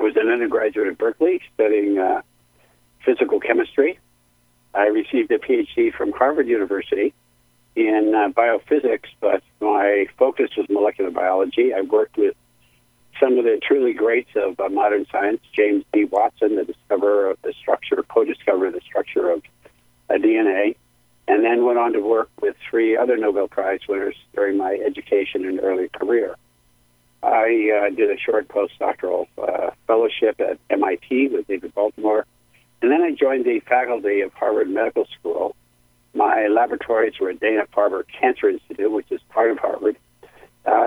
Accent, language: American, English